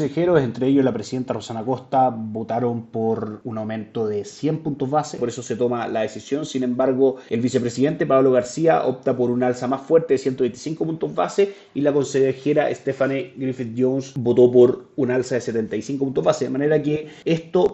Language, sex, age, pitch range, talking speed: Spanish, male, 30-49, 120-140 Hz, 180 wpm